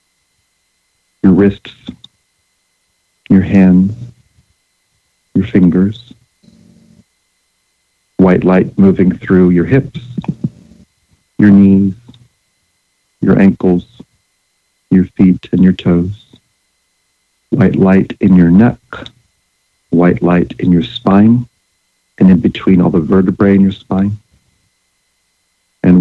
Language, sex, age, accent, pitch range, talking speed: English, male, 50-69, American, 85-100 Hz, 95 wpm